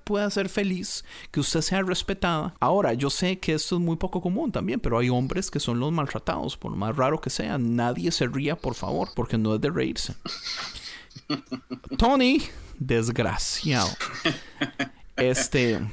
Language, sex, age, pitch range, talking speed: Spanish, male, 40-59, 125-185 Hz, 160 wpm